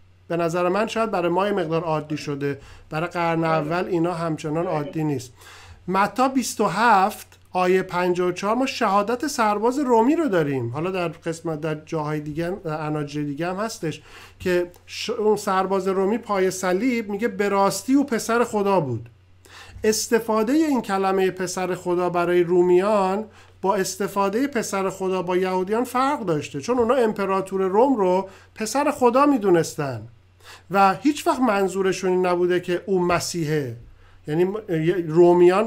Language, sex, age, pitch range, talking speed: Persian, male, 50-69, 165-215 Hz, 140 wpm